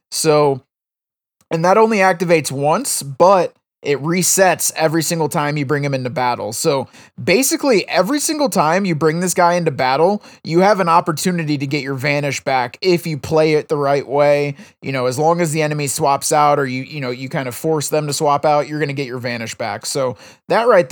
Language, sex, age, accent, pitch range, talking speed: English, male, 20-39, American, 140-165 Hz, 215 wpm